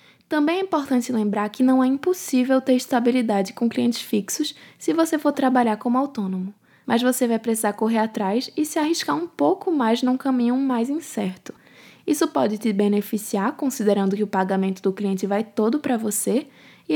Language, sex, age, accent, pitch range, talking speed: Portuguese, female, 10-29, Brazilian, 215-275 Hz, 175 wpm